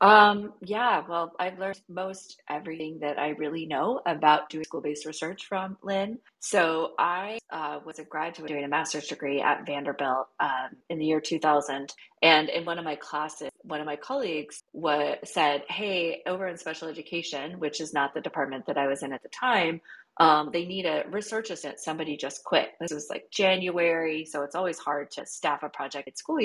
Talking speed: 195 wpm